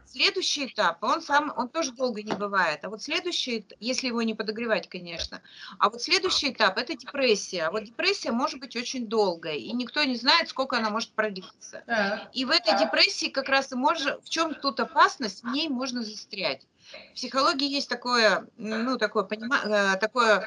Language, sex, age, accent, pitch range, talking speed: Russian, female, 30-49, native, 215-280 Hz, 175 wpm